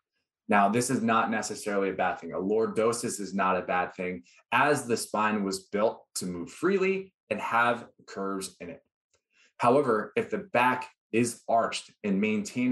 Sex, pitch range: male, 95-130 Hz